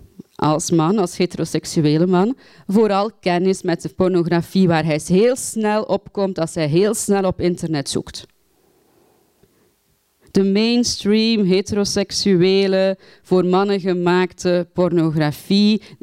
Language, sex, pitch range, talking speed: Dutch, female, 170-225 Hz, 110 wpm